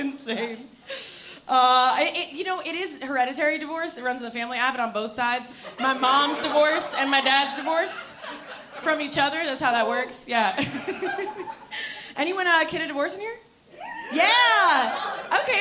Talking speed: 165 wpm